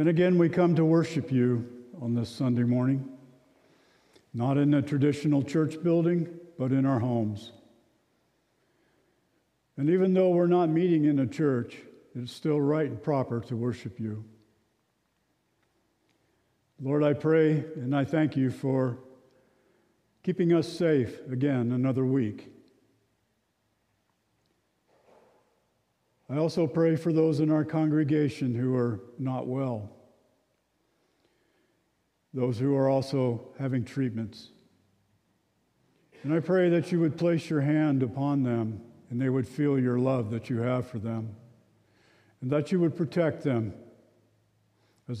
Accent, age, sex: American, 50-69, male